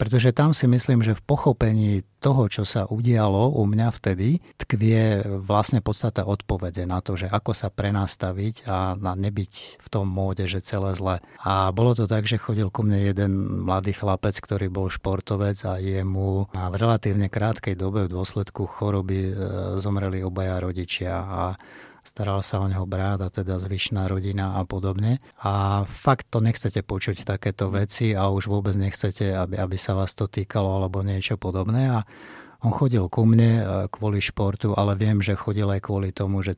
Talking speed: 170 wpm